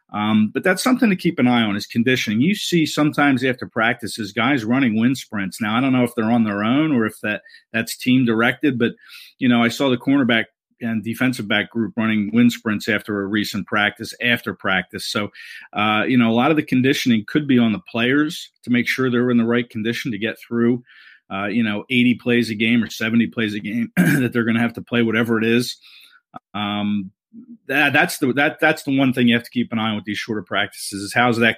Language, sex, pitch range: English, male, 105-125 Hz